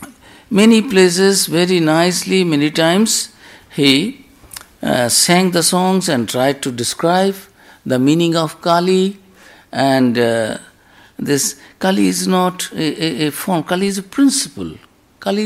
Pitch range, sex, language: 115-185 Hz, male, English